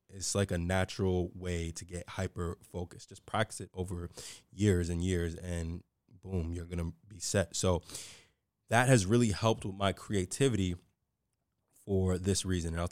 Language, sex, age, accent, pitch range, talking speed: English, male, 20-39, American, 90-105 Hz, 165 wpm